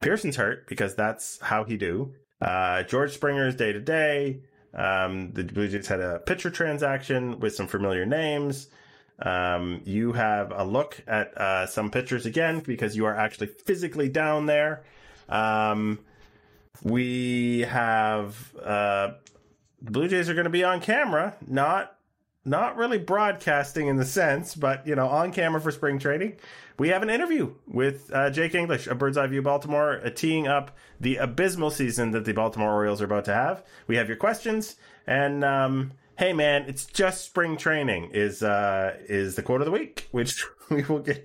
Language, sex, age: English, male, 30-49